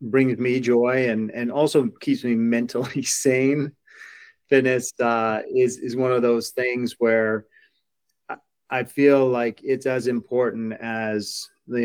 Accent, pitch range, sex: American, 110-130 Hz, male